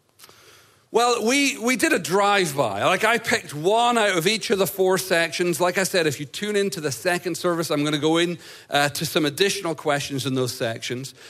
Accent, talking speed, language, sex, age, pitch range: British, 210 wpm, English, male, 40-59, 145-205 Hz